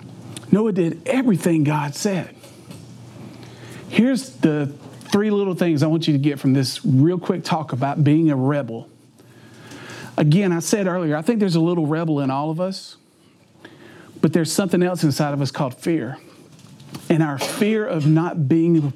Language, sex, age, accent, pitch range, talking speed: English, male, 40-59, American, 140-175 Hz, 170 wpm